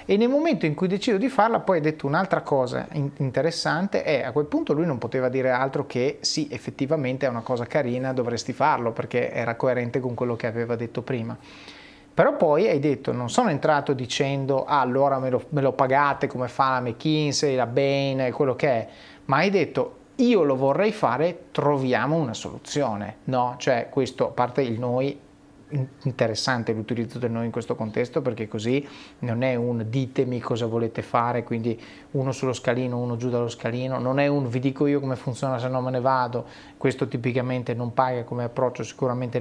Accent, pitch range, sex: native, 125-150 Hz, male